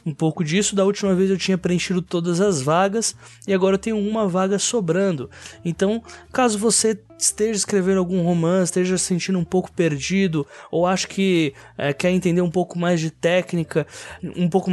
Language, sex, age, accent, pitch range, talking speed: Portuguese, male, 20-39, Brazilian, 160-205 Hz, 185 wpm